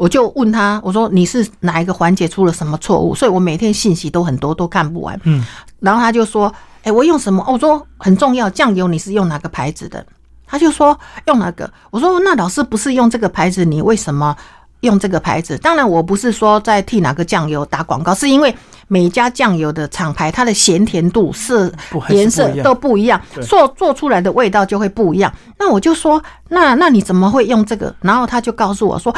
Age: 50-69